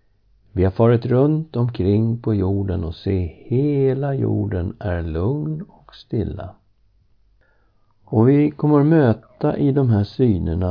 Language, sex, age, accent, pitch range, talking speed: Swedish, male, 60-79, native, 95-120 Hz, 135 wpm